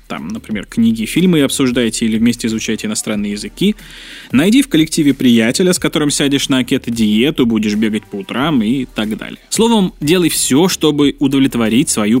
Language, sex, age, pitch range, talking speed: Russian, male, 20-39, 115-165 Hz, 155 wpm